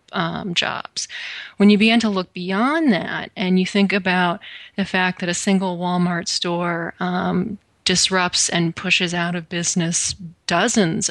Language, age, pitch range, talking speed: English, 30-49, 170-195 Hz, 150 wpm